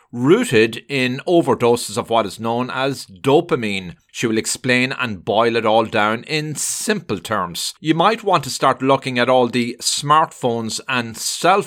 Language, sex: English, male